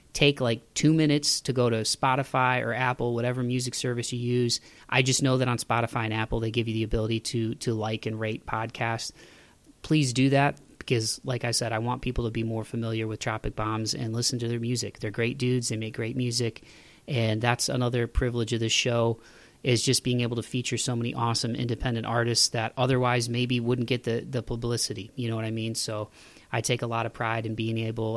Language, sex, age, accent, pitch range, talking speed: English, male, 30-49, American, 115-130 Hz, 220 wpm